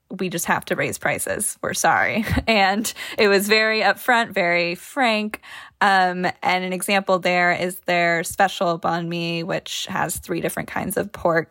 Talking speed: 165 wpm